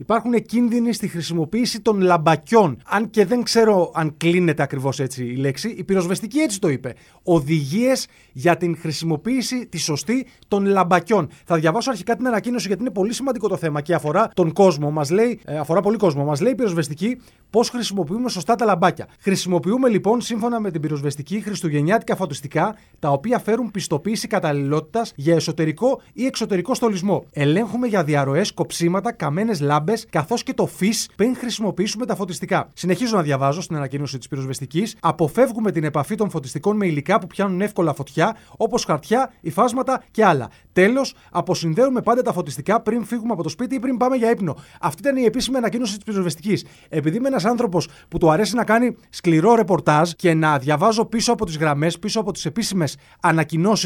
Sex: male